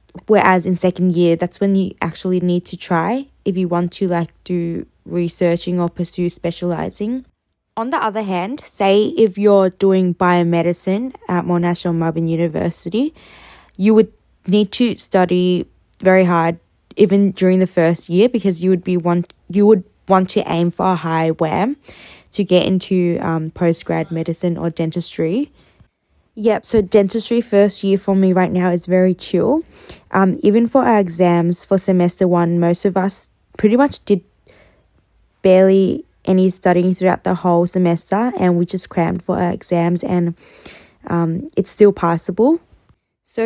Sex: female